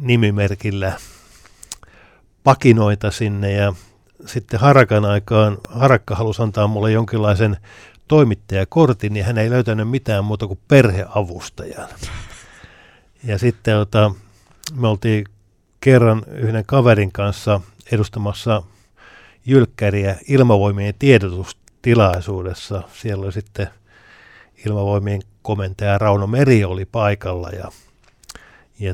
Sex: male